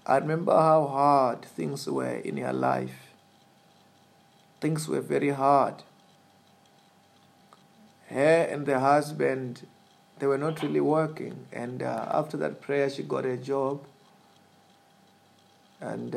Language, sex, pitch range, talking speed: English, male, 130-150 Hz, 120 wpm